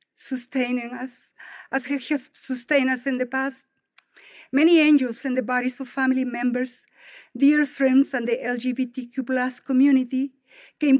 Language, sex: English, female